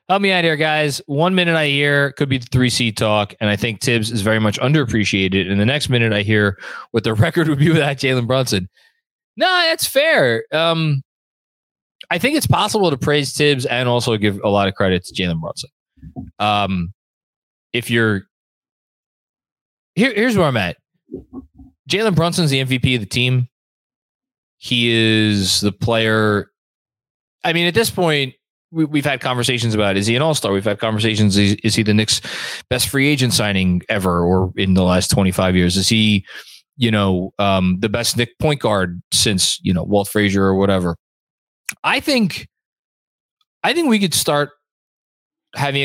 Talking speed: 175 wpm